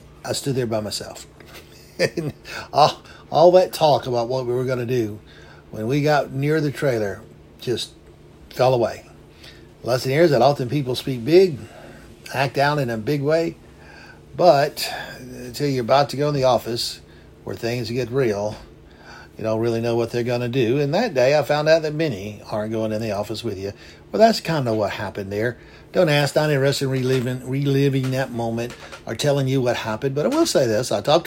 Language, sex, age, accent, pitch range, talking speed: English, male, 60-79, American, 115-155 Hz, 200 wpm